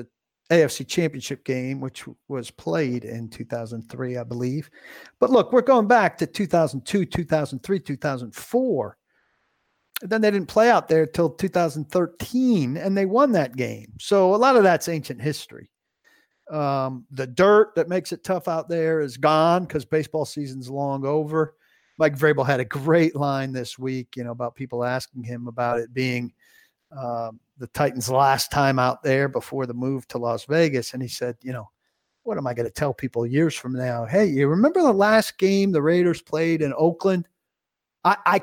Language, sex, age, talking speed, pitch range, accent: English, male, 50-69, 175 wpm, 130-170 Hz, American